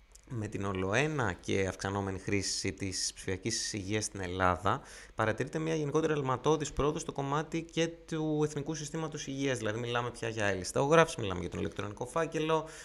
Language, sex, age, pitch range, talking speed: Greek, male, 20-39, 95-140 Hz, 155 wpm